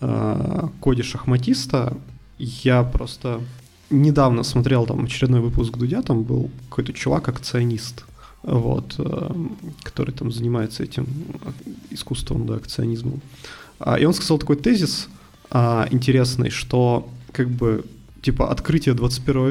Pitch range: 120-140 Hz